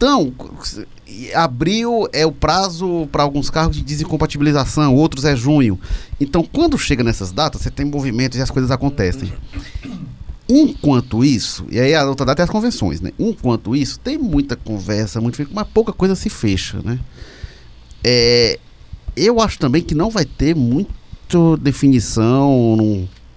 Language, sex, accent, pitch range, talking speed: Portuguese, male, Brazilian, 105-150 Hz, 150 wpm